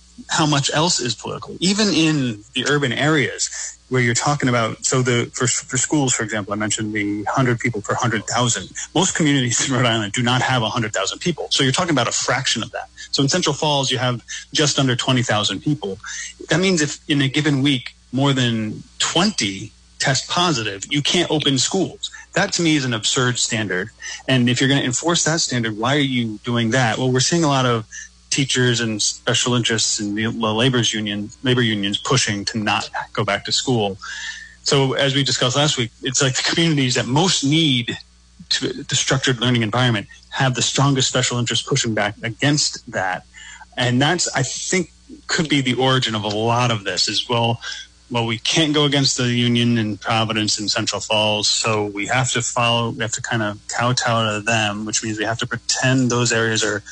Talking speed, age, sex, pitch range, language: 200 wpm, 30-49, male, 110-140 Hz, English